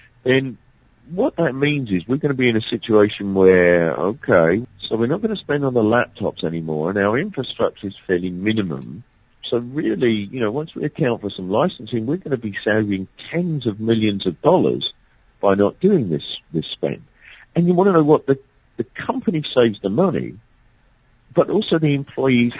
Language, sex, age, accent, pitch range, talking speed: English, male, 50-69, British, 100-140 Hz, 190 wpm